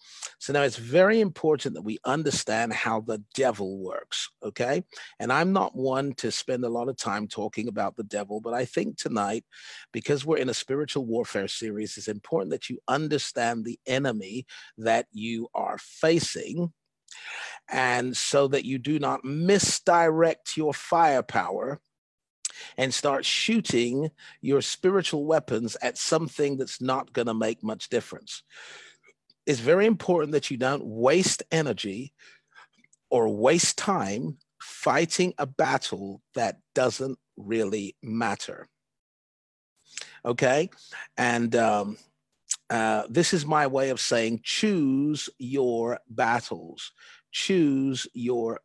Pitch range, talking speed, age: 115-155 Hz, 130 wpm, 40-59